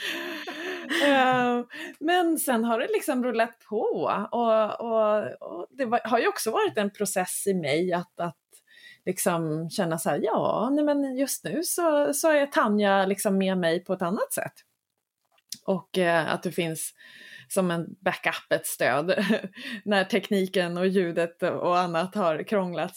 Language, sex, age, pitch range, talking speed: Swedish, female, 20-39, 185-250 Hz, 160 wpm